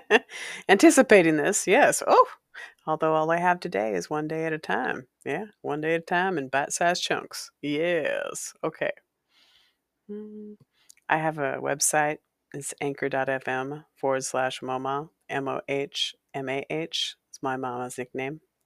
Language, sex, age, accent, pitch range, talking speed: English, female, 40-59, American, 145-180 Hz, 145 wpm